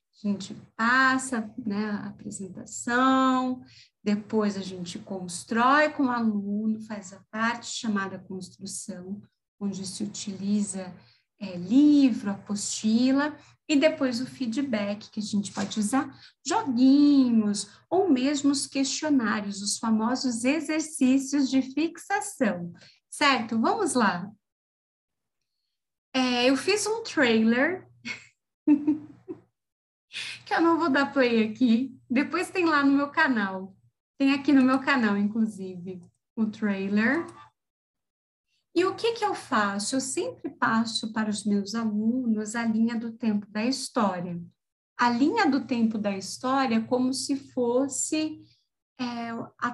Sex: female